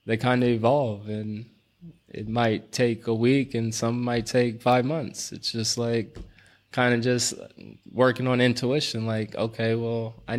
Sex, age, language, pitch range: male, 20-39, English, 110-125 Hz